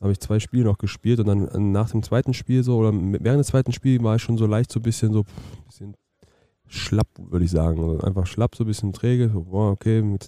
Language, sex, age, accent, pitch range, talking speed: German, male, 20-39, German, 90-110 Hz, 270 wpm